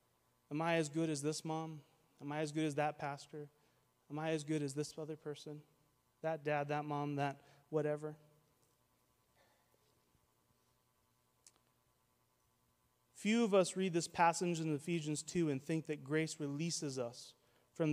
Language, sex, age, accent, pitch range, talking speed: English, male, 30-49, American, 150-210 Hz, 145 wpm